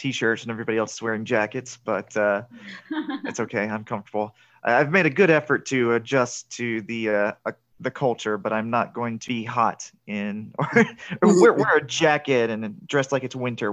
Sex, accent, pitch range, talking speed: male, American, 110-145 Hz, 195 wpm